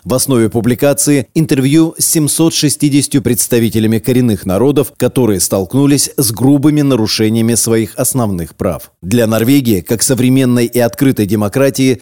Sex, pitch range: male, 110-140 Hz